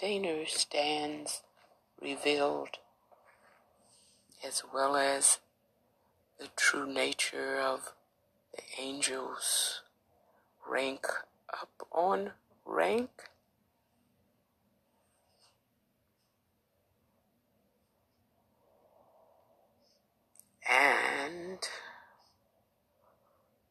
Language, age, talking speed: English, 60-79, 45 wpm